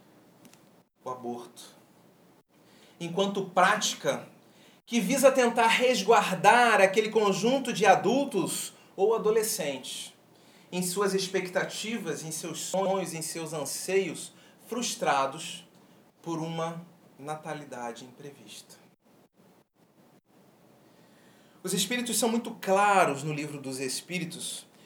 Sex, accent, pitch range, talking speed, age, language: male, Brazilian, 170-225 Hz, 90 wpm, 40-59, Portuguese